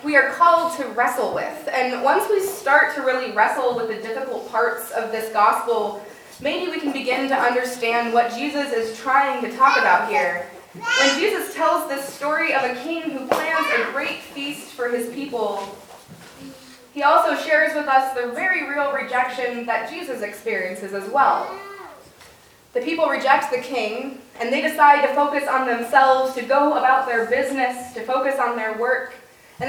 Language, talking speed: English, 175 wpm